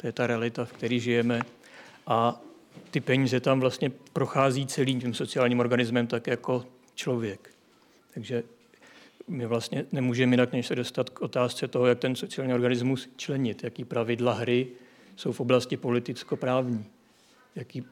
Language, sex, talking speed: Czech, male, 145 wpm